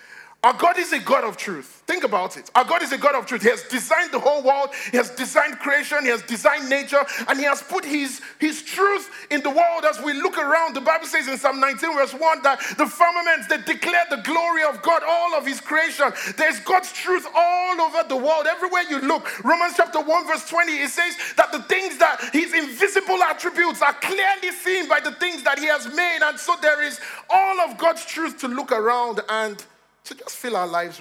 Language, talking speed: English, 225 wpm